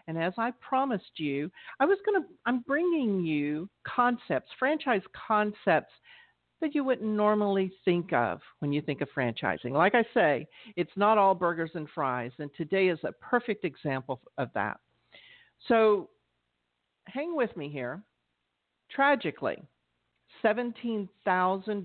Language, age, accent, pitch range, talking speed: English, 50-69, American, 150-215 Hz, 135 wpm